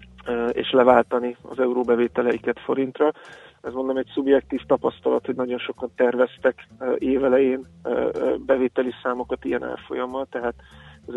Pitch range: 125-140 Hz